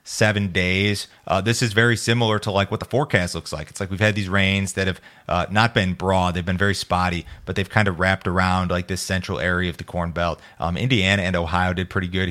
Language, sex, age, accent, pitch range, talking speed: English, male, 30-49, American, 90-100 Hz, 250 wpm